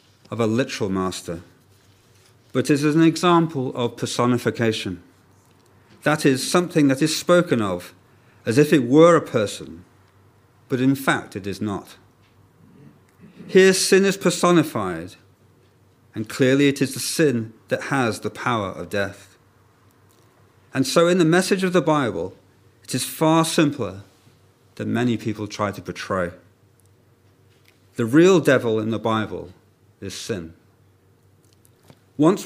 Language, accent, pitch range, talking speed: English, British, 100-145 Hz, 135 wpm